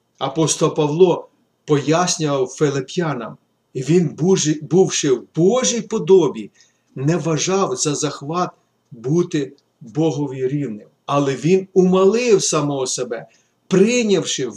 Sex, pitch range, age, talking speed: male, 130-185 Hz, 40-59, 95 wpm